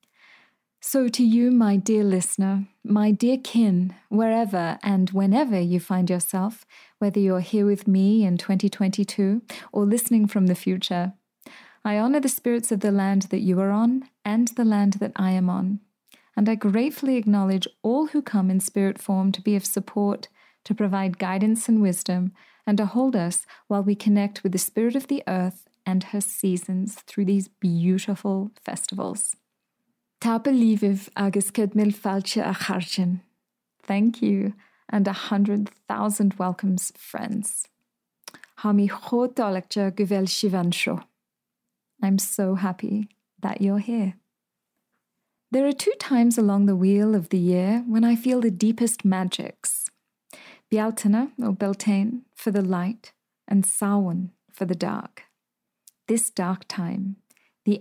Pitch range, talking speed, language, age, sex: 195-225 Hz, 135 wpm, English, 30-49, female